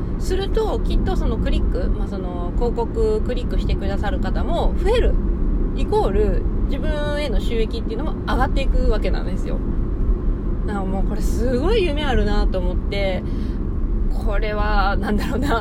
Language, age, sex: Japanese, 20-39, female